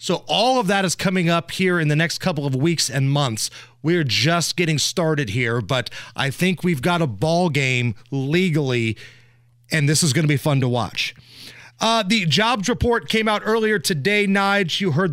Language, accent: English, American